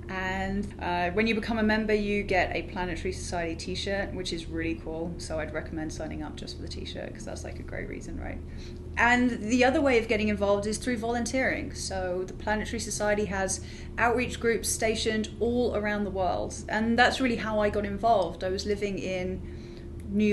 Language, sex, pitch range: English, female, 190-230 Hz